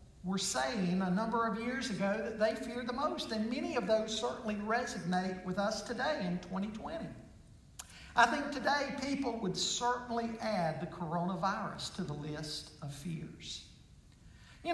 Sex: male